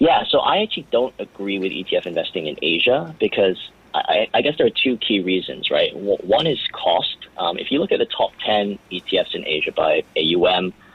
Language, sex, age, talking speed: English, male, 30-49, 205 wpm